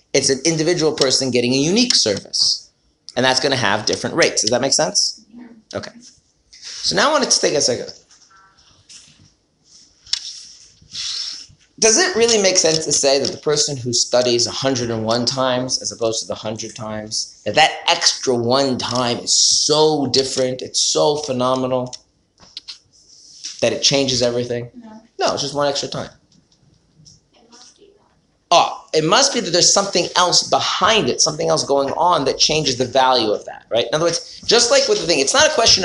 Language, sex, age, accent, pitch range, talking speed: English, male, 30-49, American, 120-165 Hz, 175 wpm